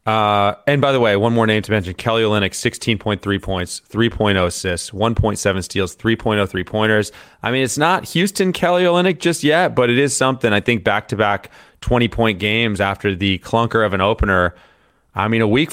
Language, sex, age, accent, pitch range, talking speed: English, male, 30-49, American, 95-125 Hz, 195 wpm